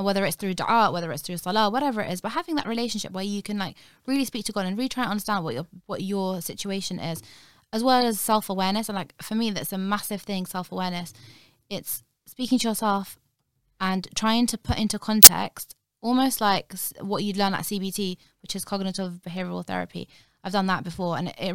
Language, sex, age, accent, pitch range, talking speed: English, female, 20-39, British, 175-210 Hz, 210 wpm